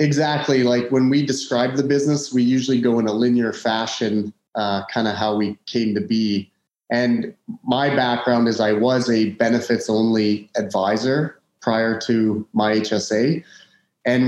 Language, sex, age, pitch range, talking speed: English, male, 30-49, 115-140 Hz, 150 wpm